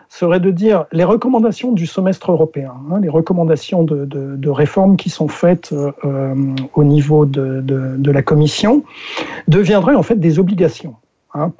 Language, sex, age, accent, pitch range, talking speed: French, male, 50-69, French, 145-185 Hz, 165 wpm